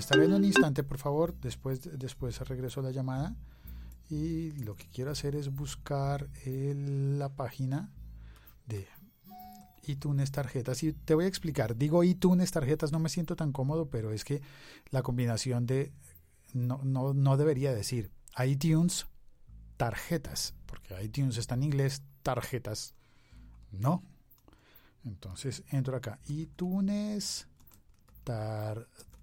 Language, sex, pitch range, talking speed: Spanish, male, 120-150 Hz, 130 wpm